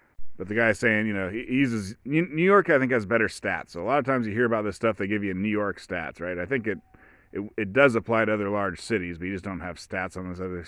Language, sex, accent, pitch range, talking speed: English, male, American, 95-120 Hz, 290 wpm